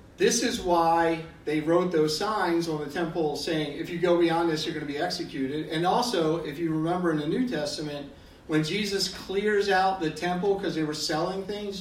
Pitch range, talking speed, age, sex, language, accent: 155-195 Hz, 210 wpm, 50-69, male, English, American